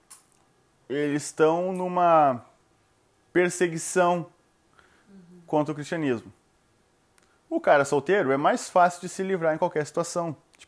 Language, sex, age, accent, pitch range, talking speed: Portuguese, male, 20-39, Brazilian, 150-190 Hz, 110 wpm